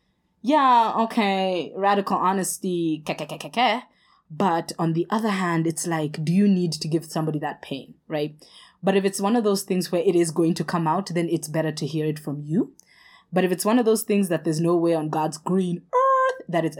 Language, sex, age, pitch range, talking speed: English, female, 20-39, 155-195 Hz, 215 wpm